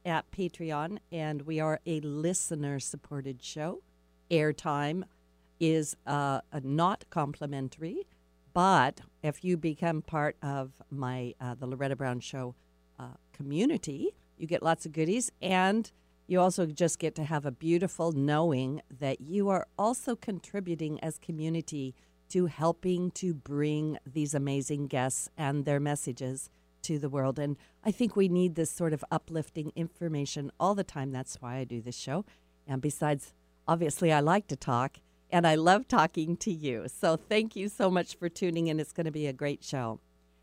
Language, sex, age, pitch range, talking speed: English, female, 50-69, 135-180 Hz, 165 wpm